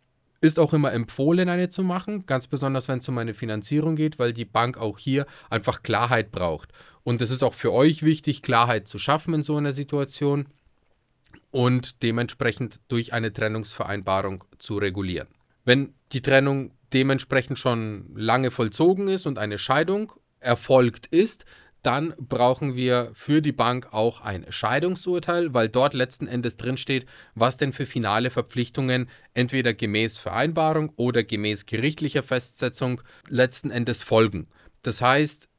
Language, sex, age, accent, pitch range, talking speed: German, male, 30-49, German, 115-145 Hz, 150 wpm